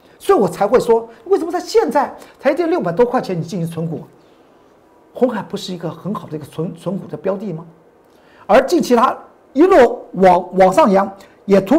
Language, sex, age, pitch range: Chinese, male, 50-69, 185-300 Hz